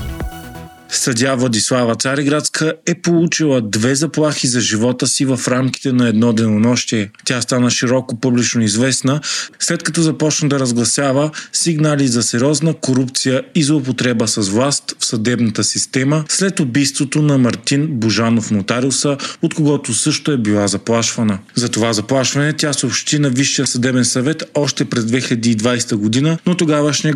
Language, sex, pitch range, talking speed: Bulgarian, male, 120-145 Hz, 140 wpm